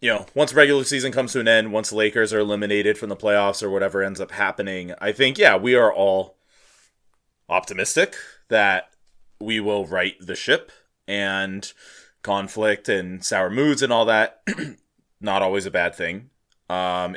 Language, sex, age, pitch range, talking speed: English, male, 20-39, 95-115 Hz, 170 wpm